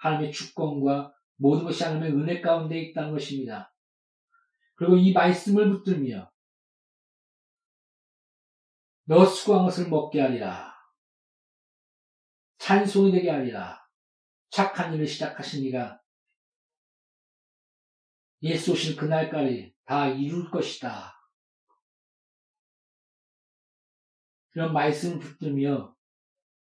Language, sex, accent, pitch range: Korean, male, native, 140-180 Hz